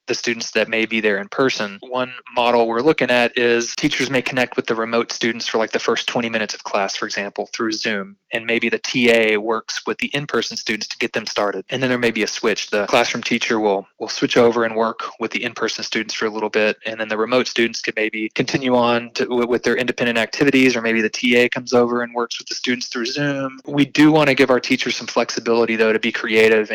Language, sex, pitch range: English, male, 110-135 Hz